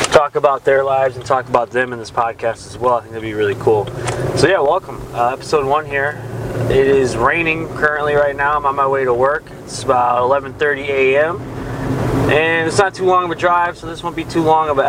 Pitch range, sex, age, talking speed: 125-145 Hz, male, 20-39, 235 wpm